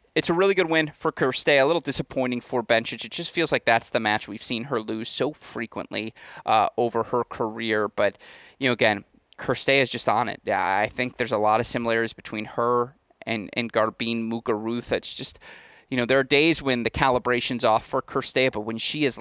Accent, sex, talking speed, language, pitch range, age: American, male, 210 wpm, English, 115-135 Hz, 30-49